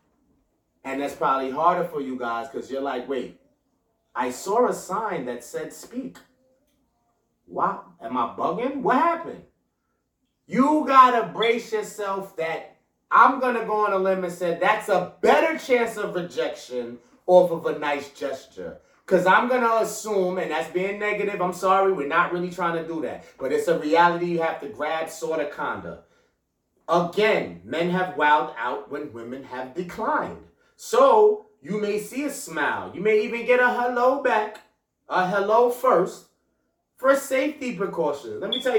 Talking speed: 170 wpm